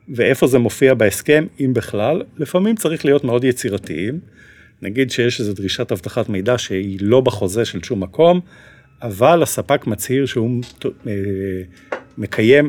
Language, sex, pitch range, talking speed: Hebrew, male, 105-140 Hz, 130 wpm